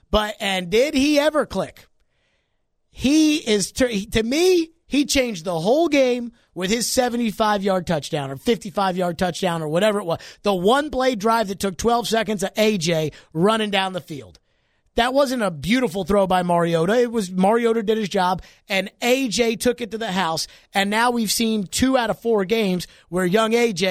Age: 30-49